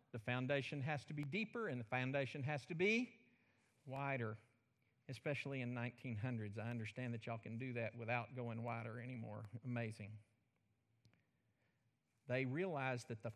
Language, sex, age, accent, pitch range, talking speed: English, male, 50-69, American, 115-150 Hz, 145 wpm